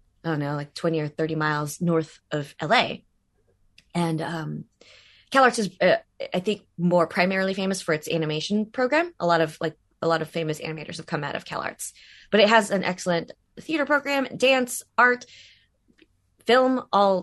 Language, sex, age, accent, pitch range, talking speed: English, female, 20-39, American, 145-185 Hz, 175 wpm